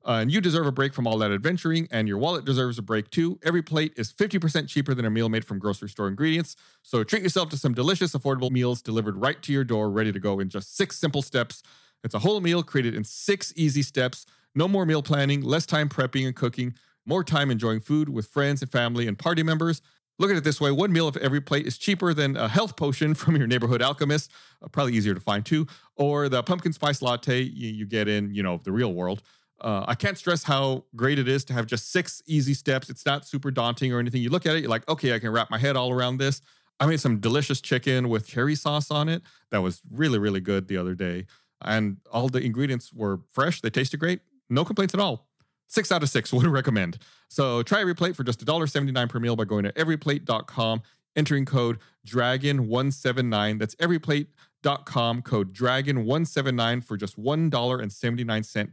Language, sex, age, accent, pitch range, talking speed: English, male, 40-59, American, 115-155 Hz, 215 wpm